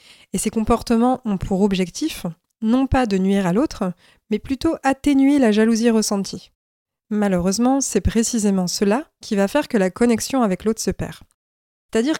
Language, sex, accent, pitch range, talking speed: French, female, French, 185-230 Hz, 160 wpm